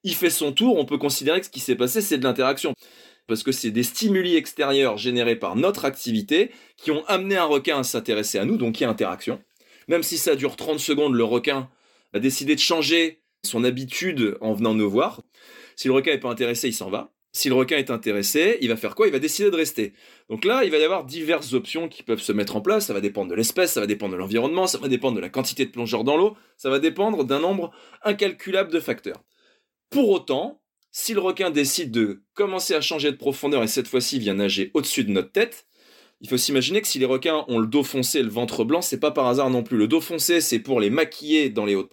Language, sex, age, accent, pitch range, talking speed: French, male, 20-39, French, 125-190 Hz, 250 wpm